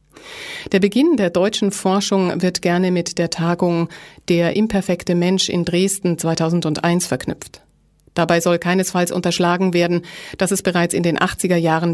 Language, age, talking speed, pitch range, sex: German, 30-49, 140 wpm, 170-200 Hz, female